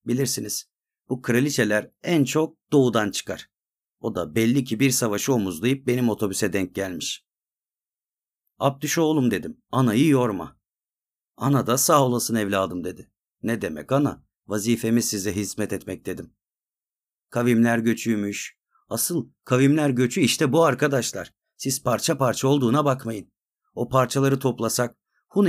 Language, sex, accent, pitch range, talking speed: Turkish, male, native, 110-140 Hz, 125 wpm